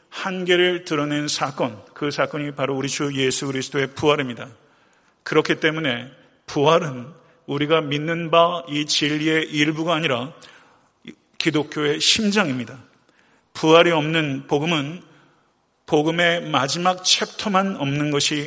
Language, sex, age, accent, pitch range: Korean, male, 40-59, native, 140-160 Hz